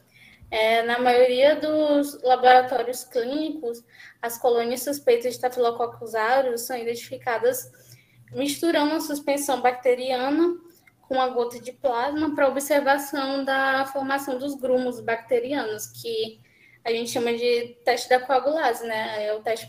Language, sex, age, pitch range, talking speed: Portuguese, female, 10-29, 235-280 Hz, 125 wpm